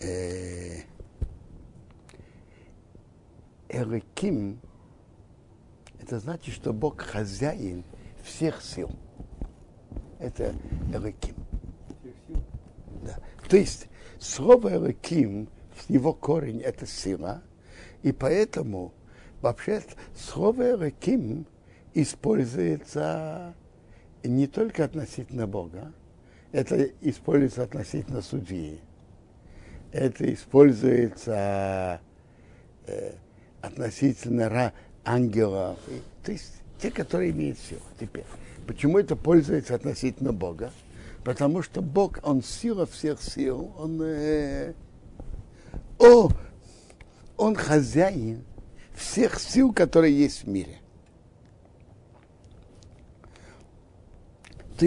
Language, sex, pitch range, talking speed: Russian, male, 95-150 Hz, 75 wpm